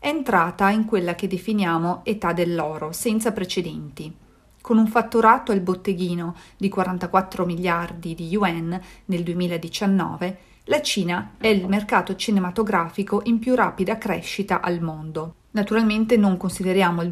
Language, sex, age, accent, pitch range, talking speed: Italian, female, 40-59, native, 175-205 Hz, 135 wpm